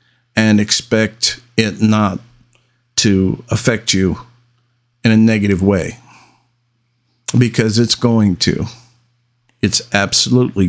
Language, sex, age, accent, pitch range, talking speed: English, male, 50-69, American, 110-125 Hz, 95 wpm